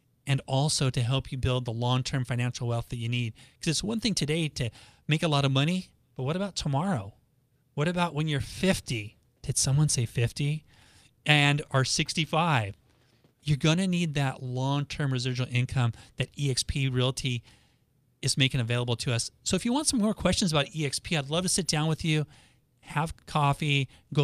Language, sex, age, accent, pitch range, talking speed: English, male, 30-49, American, 125-150 Hz, 185 wpm